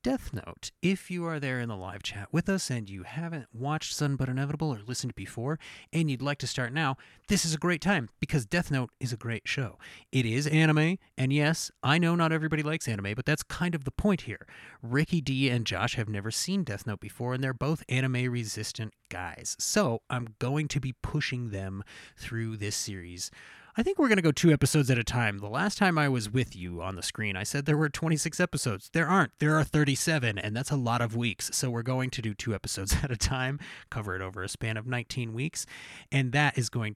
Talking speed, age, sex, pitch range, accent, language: 230 wpm, 30-49, male, 115-160 Hz, American, English